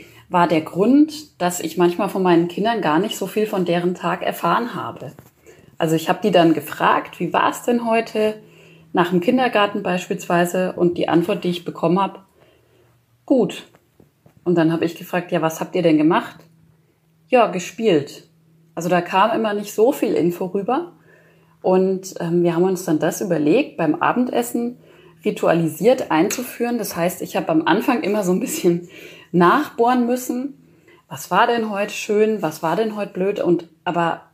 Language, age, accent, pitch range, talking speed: German, 30-49, German, 165-215 Hz, 175 wpm